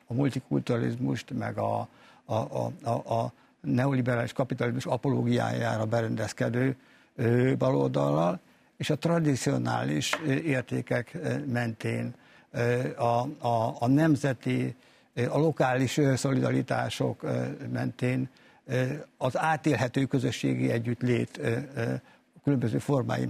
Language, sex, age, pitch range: Hungarian, male, 60-79, 120-145 Hz